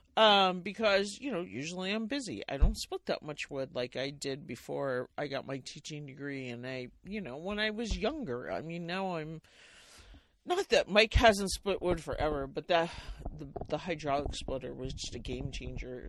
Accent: American